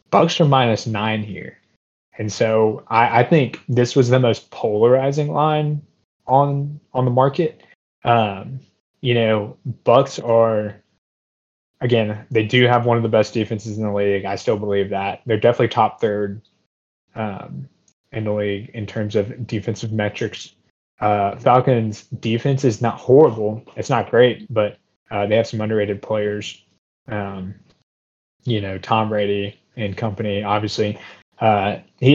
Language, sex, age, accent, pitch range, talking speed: English, male, 20-39, American, 105-120 Hz, 150 wpm